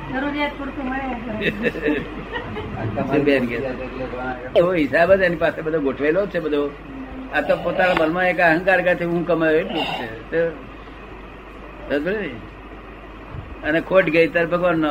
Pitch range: 150-180 Hz